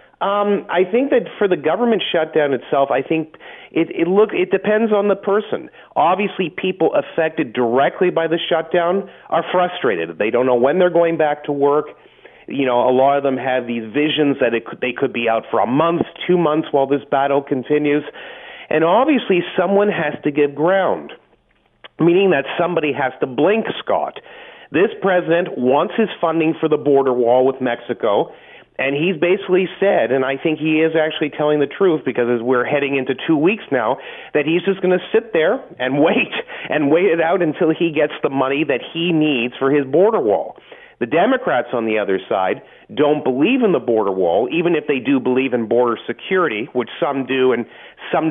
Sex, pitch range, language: male, 135-180 Hz, English